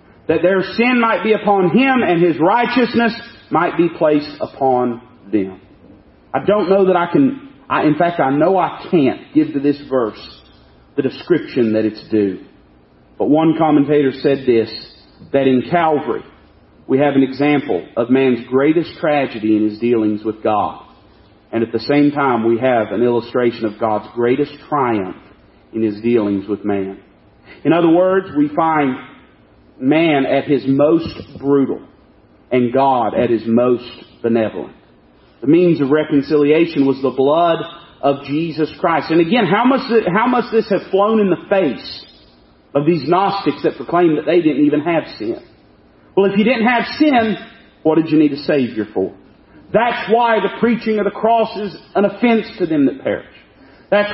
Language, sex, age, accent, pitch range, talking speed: English, male, 40-59, American, 125-200 Hz, 165 wpm